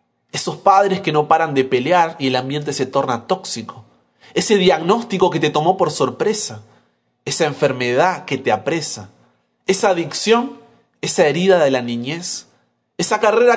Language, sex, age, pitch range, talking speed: Spanish, male, 30-49, 130-210 Hz, 150 wpm